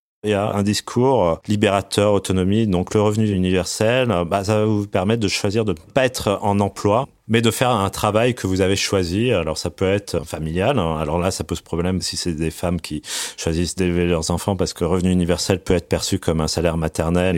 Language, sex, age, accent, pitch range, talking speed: French, male, 30-49, French, 90-110 Hz, 220 wpm